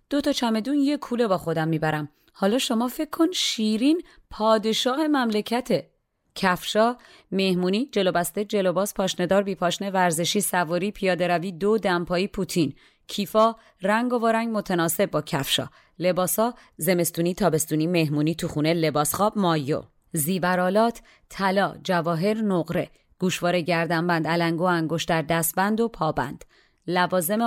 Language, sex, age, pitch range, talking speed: Persian, female, 30-49, 170-215 Hz, 120 wpm